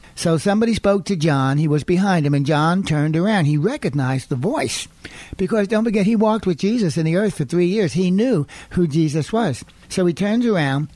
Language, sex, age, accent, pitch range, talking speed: English, male, 60-79, American, 150-185 Hz, 215 wpm